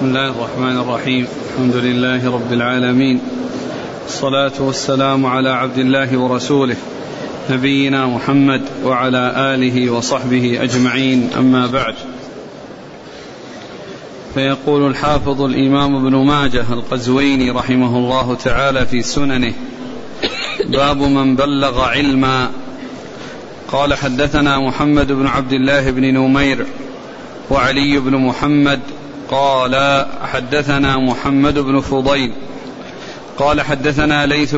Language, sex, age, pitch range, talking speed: Arabic, male, 40-59, 130-145 Hz, 95 wpm